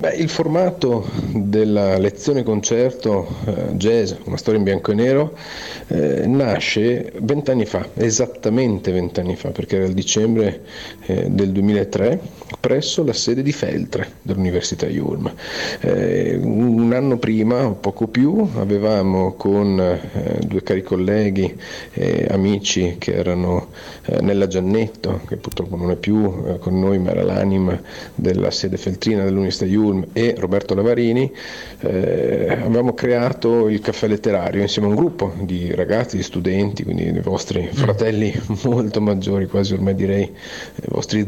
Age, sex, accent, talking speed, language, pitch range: 40-59, male, native, 145 wpm, Italian, 95-115 Hz